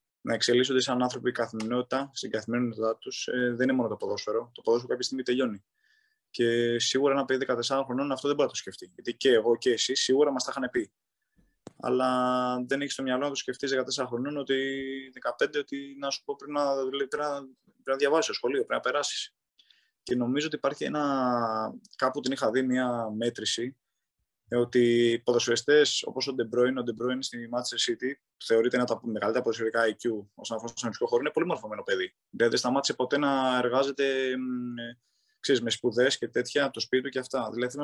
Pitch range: 120-140 Hz